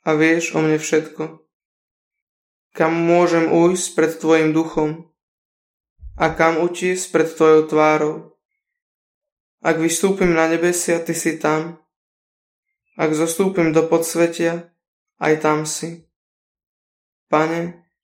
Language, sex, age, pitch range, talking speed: Slovak, male, 20-39, 155-170 Hz, 105 wpm